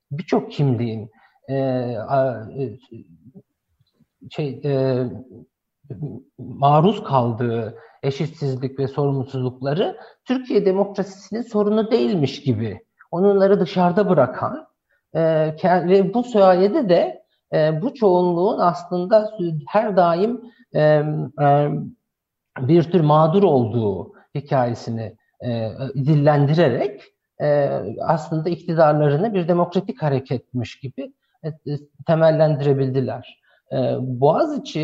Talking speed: 85 wpm